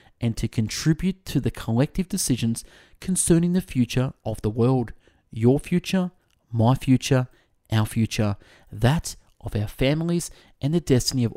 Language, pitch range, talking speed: English, 110-145 Hz, 145 wpm